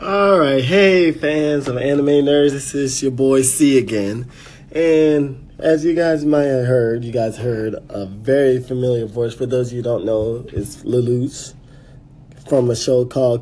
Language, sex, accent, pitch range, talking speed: English, male, American, 115-140 Hz, 180 wpm